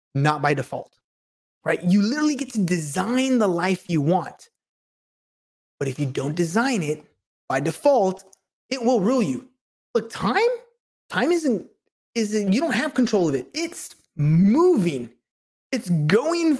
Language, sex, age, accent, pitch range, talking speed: English, male, 20-39, American, 170-250 Hz, 145 wpm